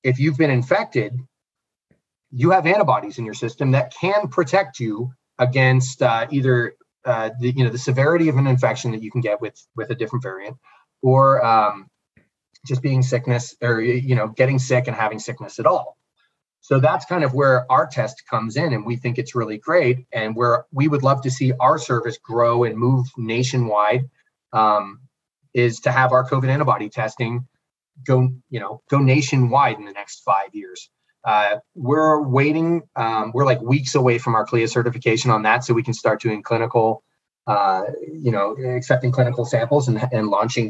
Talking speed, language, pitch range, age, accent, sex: 185 wpm, English, 120-145 Hz, 30-49, American, male